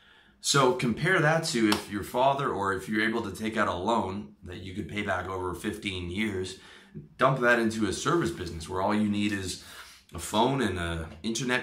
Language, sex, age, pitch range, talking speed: English, male, 30-49, 85-110 Hz, 205 wpm